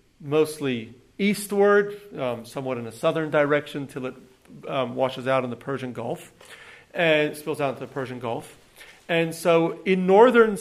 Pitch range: 135-195 Hz